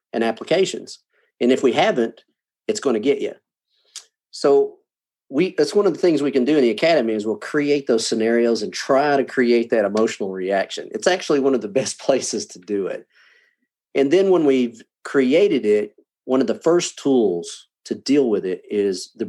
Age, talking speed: 40-59, 195 wpm